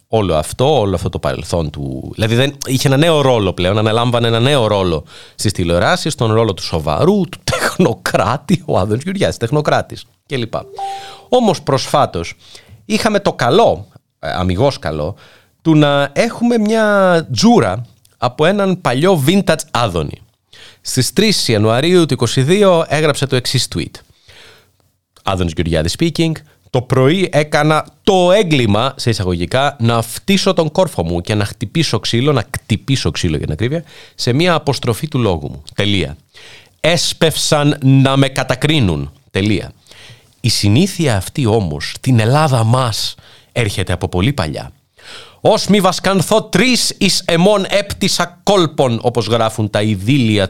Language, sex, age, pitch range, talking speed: Greek, male, 30-49, 105-165 Hz, 140 wpm